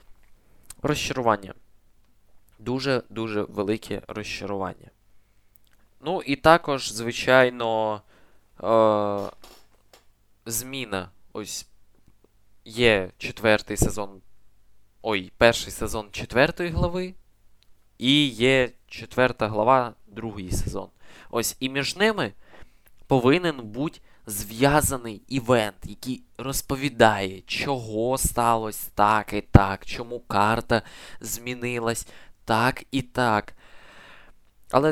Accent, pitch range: native, 105-135 Hz